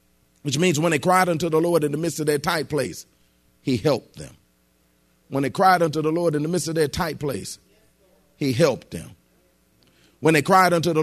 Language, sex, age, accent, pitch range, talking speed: English, male, 40-59, American, 130-180 Hz, 210 wpm